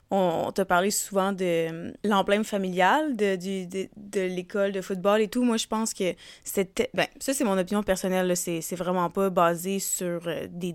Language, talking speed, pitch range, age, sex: French, 190 wpm, 185-210 Hz, 20-39, female